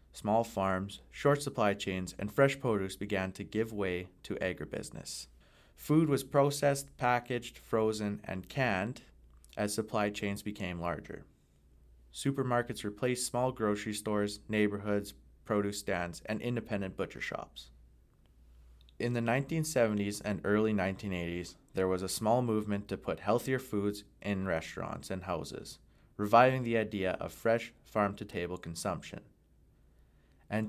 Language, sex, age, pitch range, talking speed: English, male, 20-39, 95-115 Hz, 125 wpm